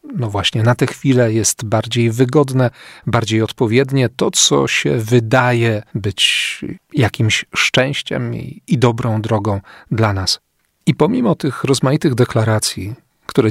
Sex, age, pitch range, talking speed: male, 40-59, 110-130 Hz, 125 wpm